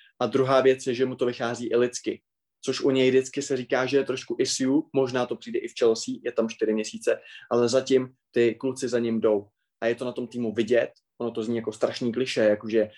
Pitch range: 120-140 Hz